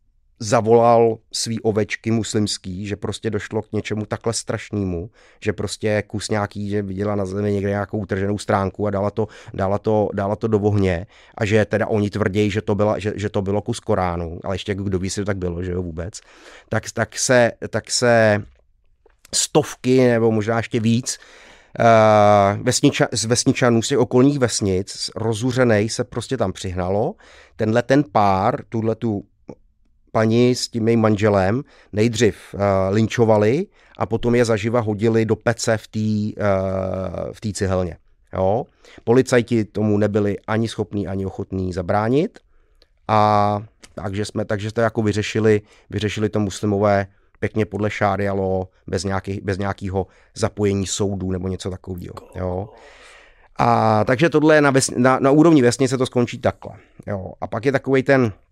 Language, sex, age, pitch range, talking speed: Czech, male, 30-49, 100-115 Hz, 155 wpm